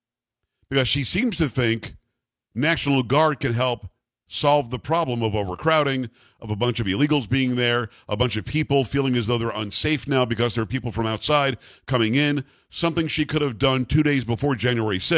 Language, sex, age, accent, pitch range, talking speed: English, male, 50-69, American, 120-150 Hz, 190 wpm